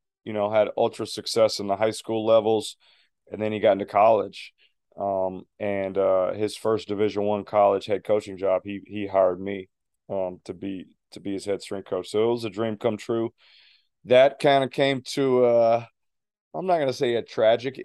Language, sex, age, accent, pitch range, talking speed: English, male, 30-49, American, 100-115 Hz, 200 wpm